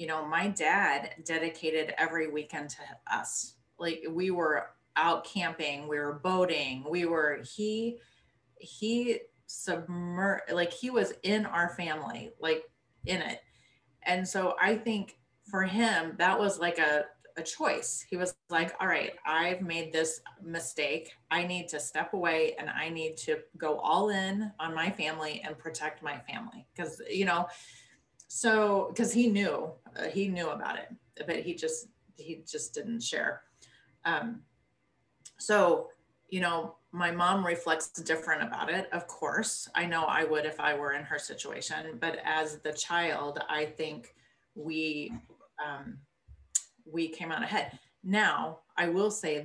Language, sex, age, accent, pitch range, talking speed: English, female, 30-49, American, 155-195 Hz, 155 wpm